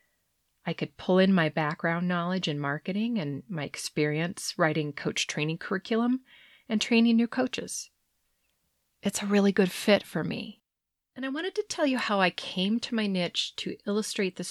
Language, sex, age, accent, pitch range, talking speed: English, female, 40-59, American, 165-225 Hz, 175 wpm